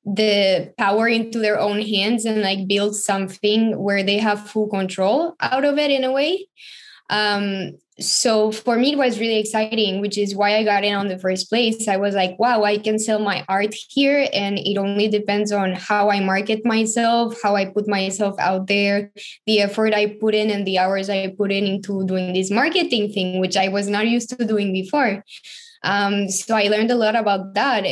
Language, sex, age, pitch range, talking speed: English, female, 10-29, 200-230 Hz, 205 wpm